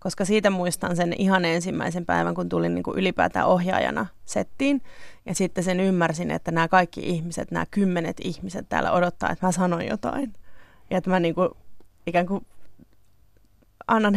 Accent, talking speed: native, 150 wpm